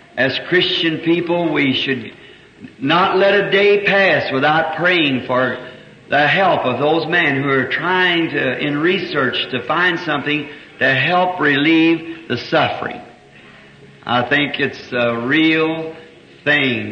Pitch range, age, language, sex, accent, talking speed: 145-190 Hz, 60-79, English, male, American, 135 wpm